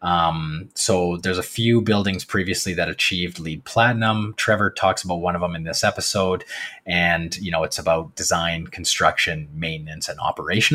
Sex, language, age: male, English, 30-49